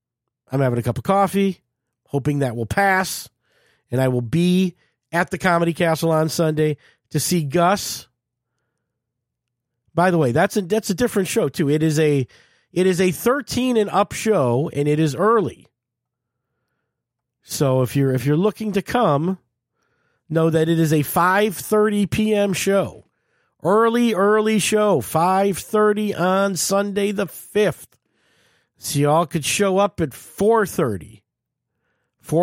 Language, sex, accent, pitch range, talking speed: English, male, American, 125-190 Hz, 150 wpm